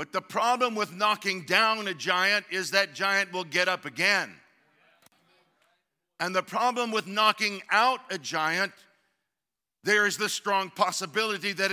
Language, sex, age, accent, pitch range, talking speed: English, male, 50-69, American, 185-240 Hz, 150 wpm